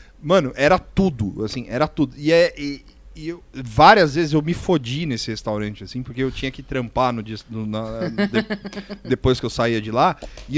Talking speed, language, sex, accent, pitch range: 165 wpm, Portuguese, male, Brazilian, 120-180 Hz